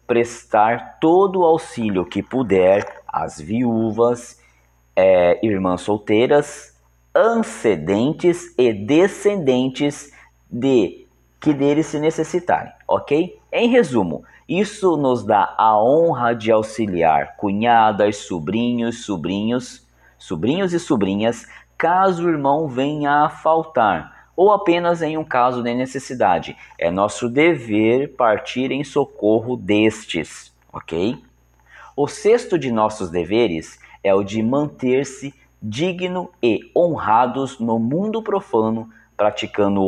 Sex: male